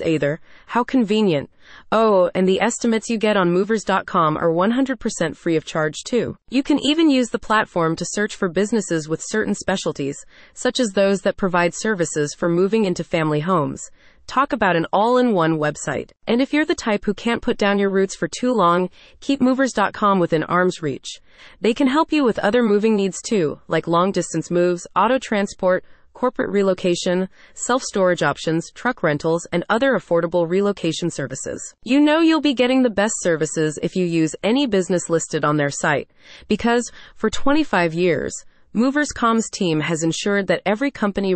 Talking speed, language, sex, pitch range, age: 175 wpm, English, female, 170-230 Hz, 30-49